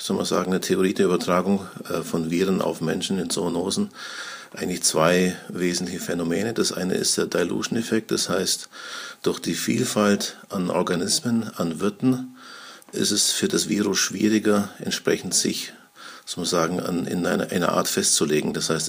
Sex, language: male, German